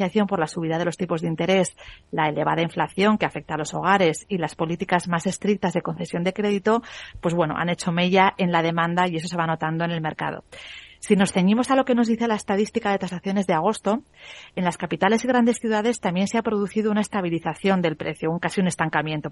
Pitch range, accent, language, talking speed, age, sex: 165-210 Hz, Spanish, Spanish, 225 wpm, 30-49, female